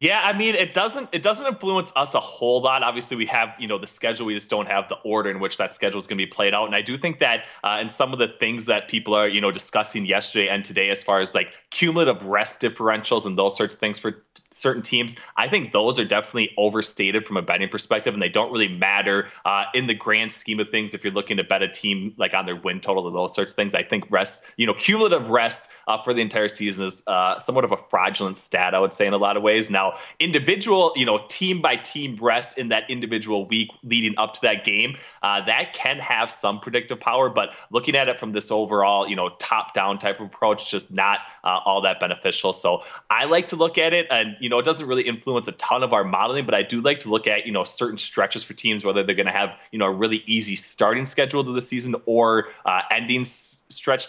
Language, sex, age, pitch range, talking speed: English, male, 20-39, 100-125 Hz, 260 wpm